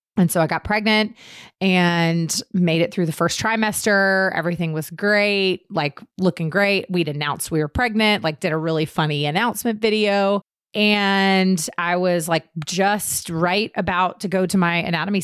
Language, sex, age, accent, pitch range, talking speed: English, female, 30-49, American, 160-195 Hz, 165 wpm